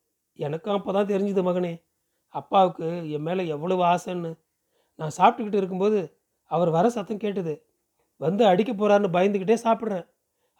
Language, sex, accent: Tamil, male, native